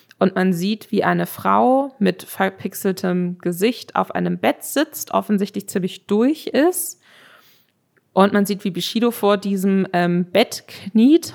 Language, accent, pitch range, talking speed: German, German, 180-215 Hz, 145 wpm